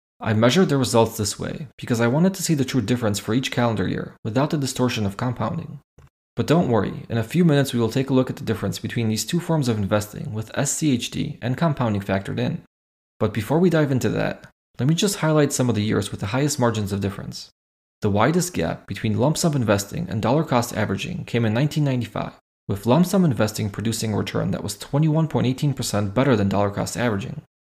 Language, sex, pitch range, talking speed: English, male, 105-140 Hz, 215 wpm